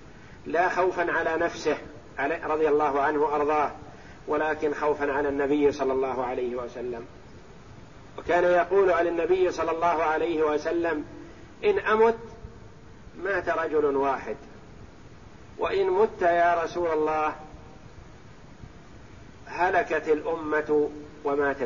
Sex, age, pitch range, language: male, 50-69, 150-190 Hz, Arabic